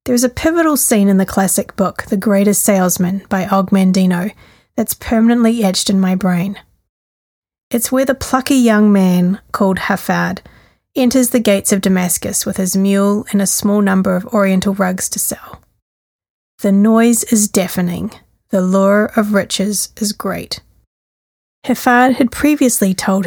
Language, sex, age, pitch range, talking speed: English, female, 30-49, 195-225 Hz, 150 wpm